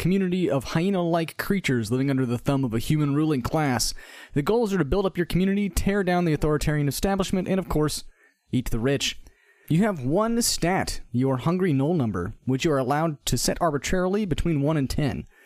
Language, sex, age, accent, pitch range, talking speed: English, male, 30-49, American, 135-185 Hz, 200 wpm